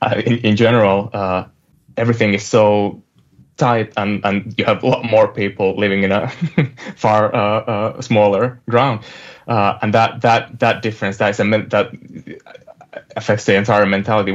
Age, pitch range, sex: 20-39, 100-115 Hz, male